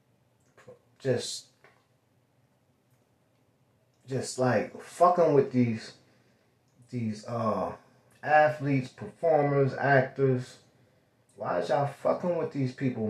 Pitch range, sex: 120-145 Hz, male